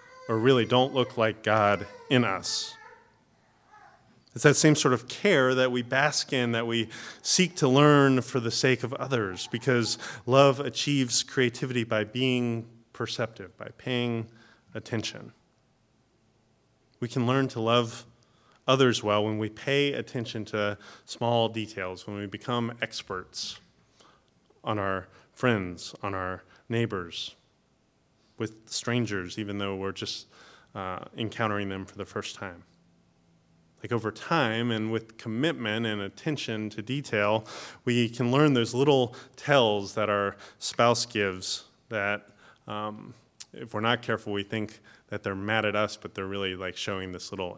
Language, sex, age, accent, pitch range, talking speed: English, male, 30-49, American, 105-125 Hz, 145 wpm